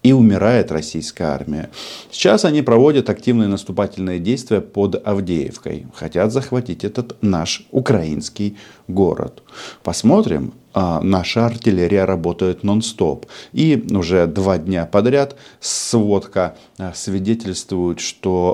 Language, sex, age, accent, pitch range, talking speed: Russian, male, 40-59, native, 85-110 Hz, 100 wpm